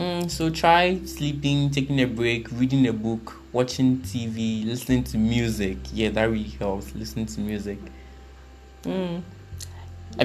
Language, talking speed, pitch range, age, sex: English, 135 wpm, 100-130 Hz, 20-39, male